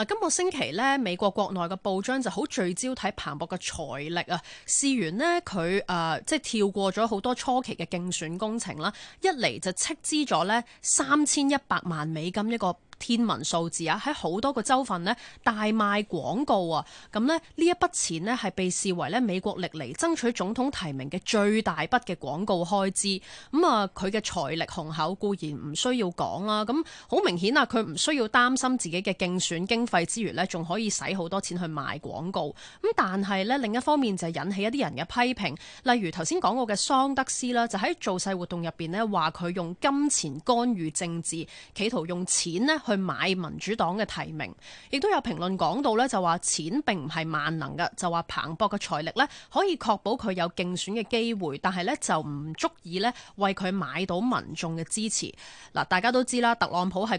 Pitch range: 175-245 Hz